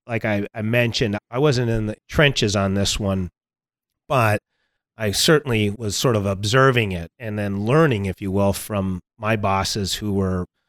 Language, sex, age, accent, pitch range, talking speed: English, male, 30-49, American, 100-125 Hz, 175 wpm